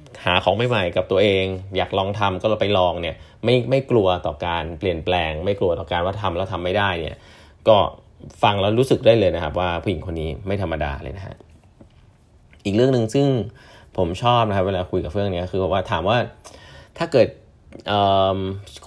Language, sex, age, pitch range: Thai, male, 20-39, 90-110 Hz